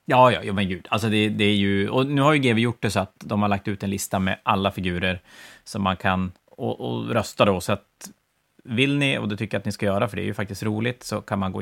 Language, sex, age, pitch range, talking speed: Swedish, male, 30-49, 100-115 Hz, 280 wpm